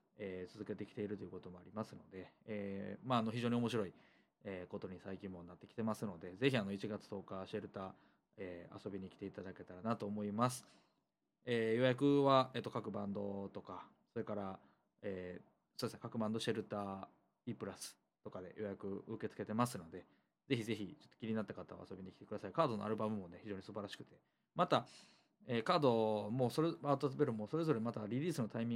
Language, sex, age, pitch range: Japanese, male, 20-39, 100-125 Hz